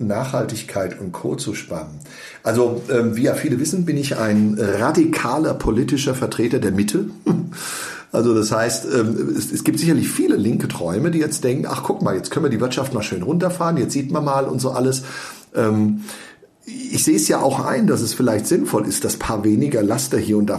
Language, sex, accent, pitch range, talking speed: German, male, German, 115-150 Hz, 190 wpm